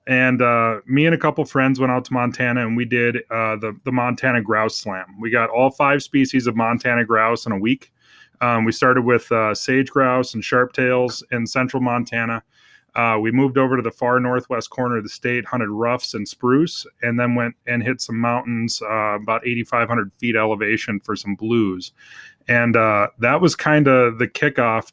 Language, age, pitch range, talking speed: English, 30-49, 115-130 Hz, 195 wpm